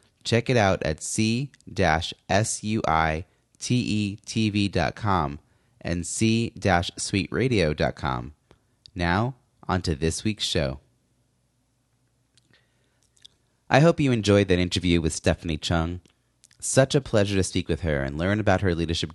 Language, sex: English, male